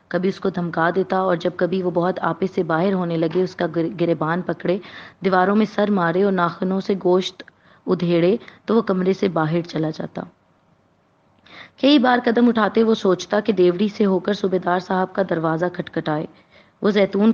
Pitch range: 175-210 Hz